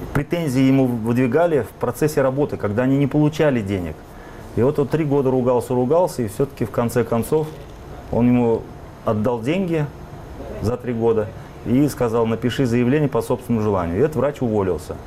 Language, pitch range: Russian, 105-140 Hz